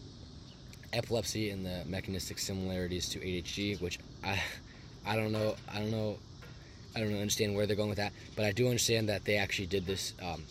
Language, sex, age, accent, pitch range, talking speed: English, male, 20-39, American, 95-120 Hz, 190 wpm